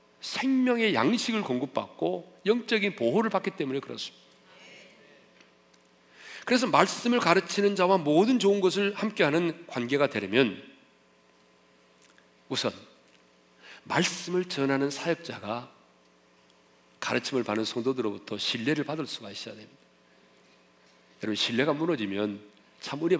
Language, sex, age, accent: Korean, male, 40-59, native